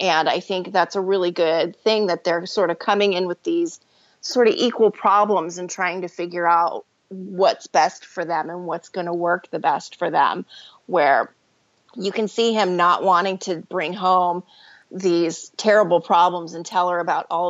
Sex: female